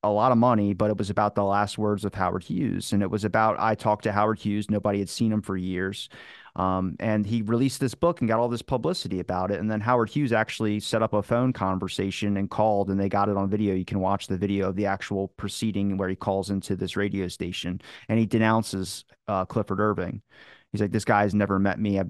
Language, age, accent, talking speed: English, 30-49, American, 245 wpm